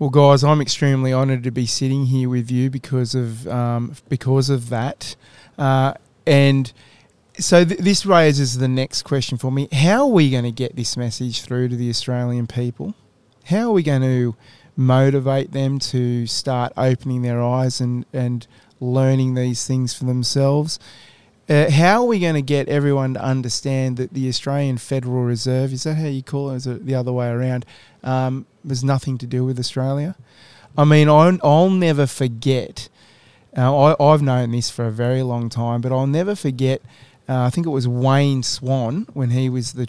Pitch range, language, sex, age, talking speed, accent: 125-140 Hz, English, male, 30-49, 190 wpm, Australian